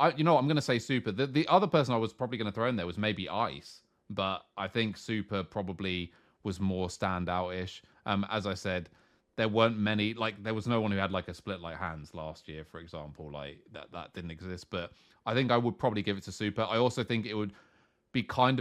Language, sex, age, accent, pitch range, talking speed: English, male, 30-49, British, 90-110 Hz, 235 wpm